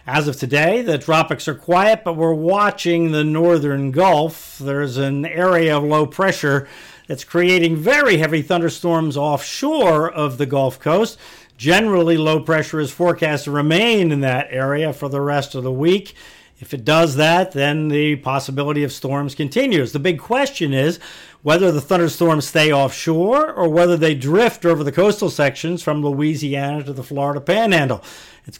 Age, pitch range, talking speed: 50-69, 140-175 Hz, 165 wpm